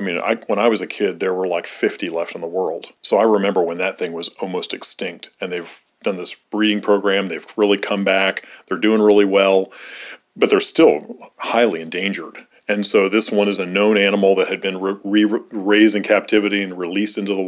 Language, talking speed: English, 220 wpm